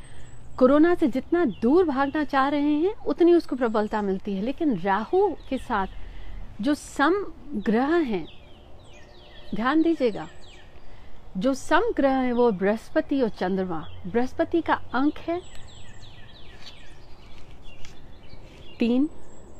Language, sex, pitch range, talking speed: Hindi, female, 215-300 Hz, 110 wpm